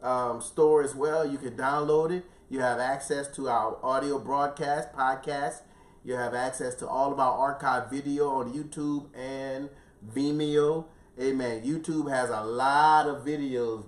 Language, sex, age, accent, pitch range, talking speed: English, male, 30-49, American, 115-150 Hz, 155 wpm